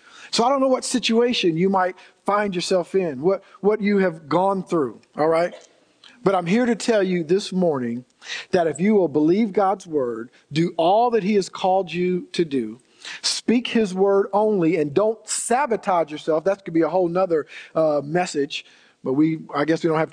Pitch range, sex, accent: 170-225 Hz, male, American